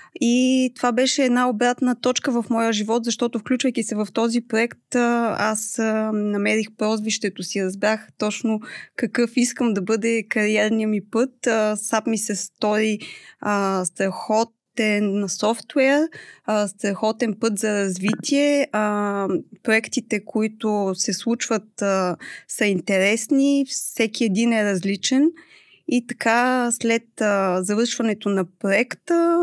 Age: 20-39